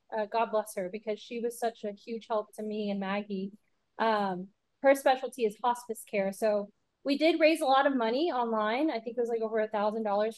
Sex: female